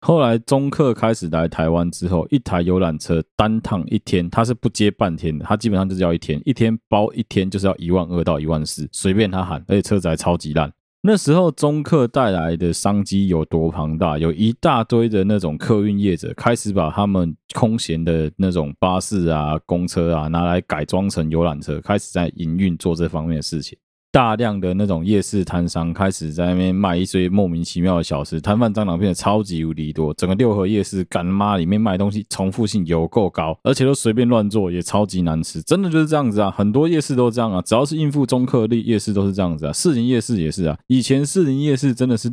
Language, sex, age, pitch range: Chinese, male, 20-39, 85-115 Hz